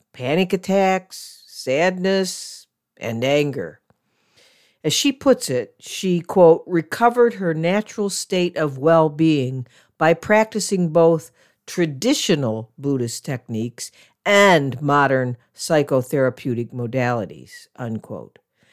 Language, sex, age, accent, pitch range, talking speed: English, female, 50-69, American, 135-185 Hz, 90 wpm